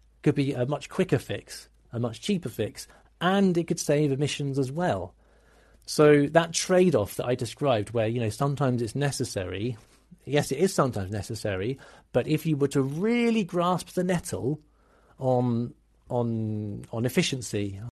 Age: 40-59